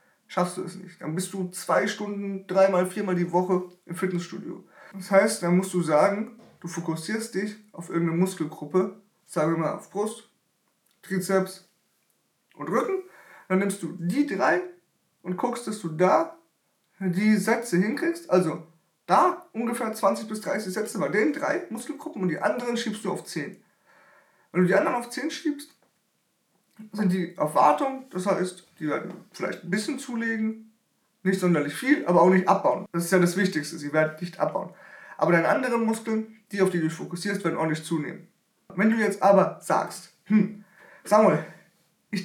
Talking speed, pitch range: 175 wpm, 180-220 Hz